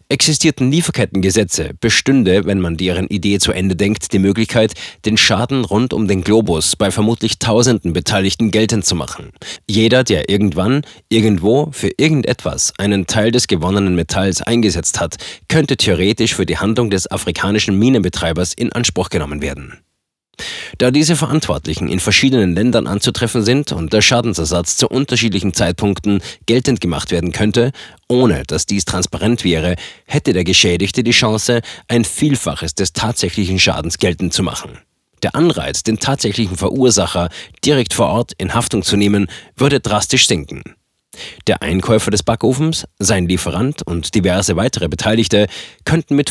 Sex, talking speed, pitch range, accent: male, 145 wpm, 90-120 Hz, German